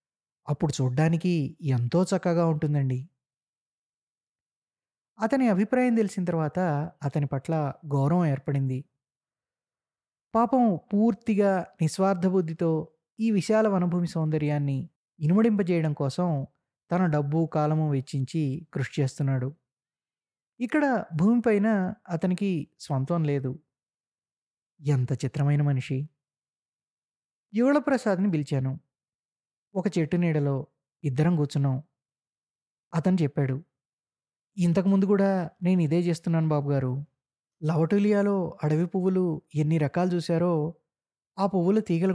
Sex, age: male, 20-39